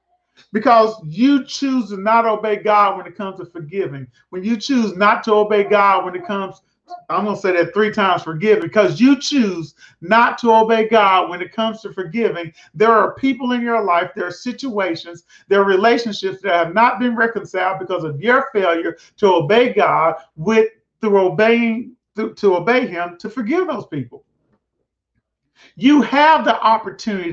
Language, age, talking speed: English, 40-59, 175 wpm